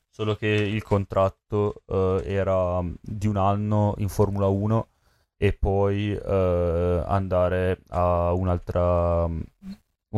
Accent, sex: native, male